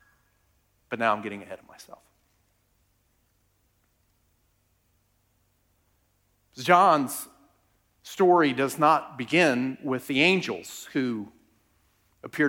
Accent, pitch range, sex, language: American, 95-145 Hz, male, English